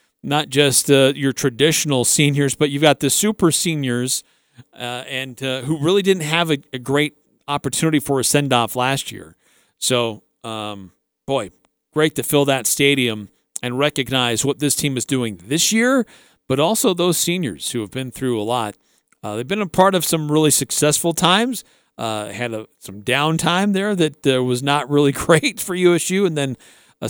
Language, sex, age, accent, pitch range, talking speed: English, male, 40-59, American, 115-150 Hz, 180 wpm